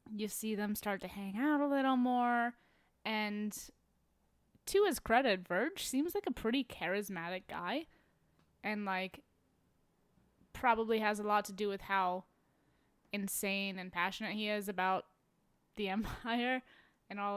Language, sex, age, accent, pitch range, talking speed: English, female, 20-39, American, 195-230 Hz, 140 wpm